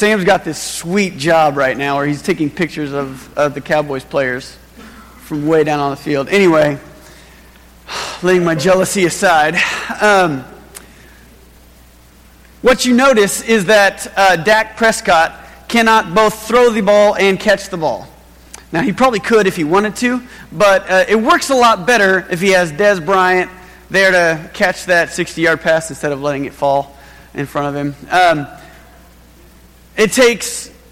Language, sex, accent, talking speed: English, male, American, 160 wpm